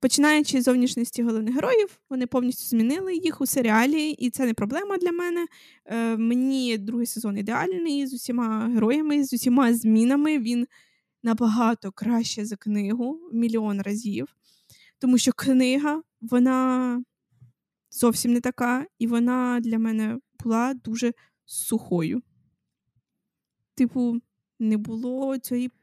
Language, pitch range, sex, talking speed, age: Ukrainian, 215-255 Hz, female, 125 wpm, 20-39